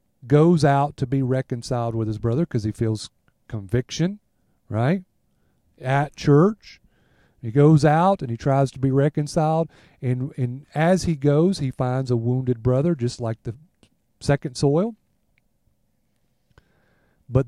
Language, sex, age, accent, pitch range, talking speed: English, male, 40-59, American, 115-155 Hz, 135 wpm